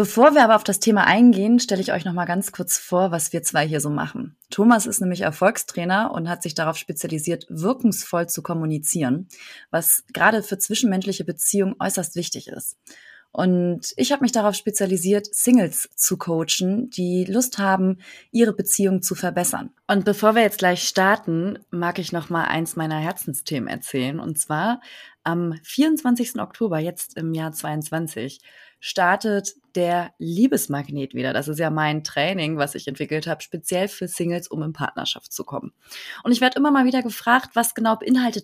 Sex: female